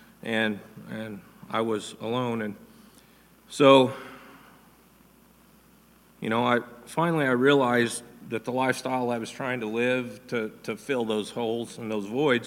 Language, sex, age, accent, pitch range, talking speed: English, male, 40-59, American, 110-135 Hz, 140 wpm